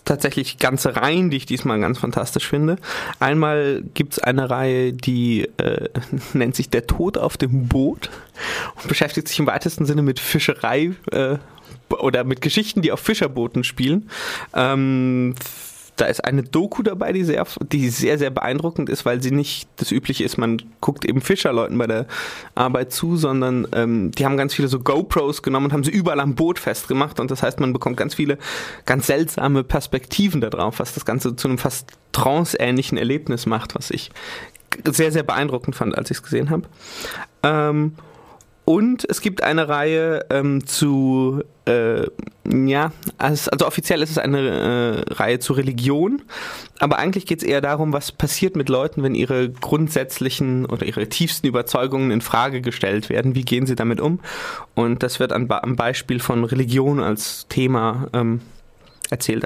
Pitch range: 125-150 Hz